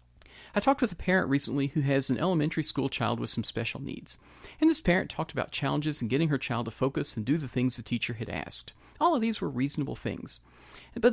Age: 40-59